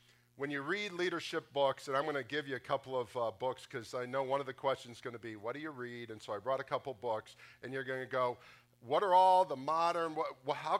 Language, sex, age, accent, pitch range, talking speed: English, male, 50-69, American, 125-165 Hz, 270 wpm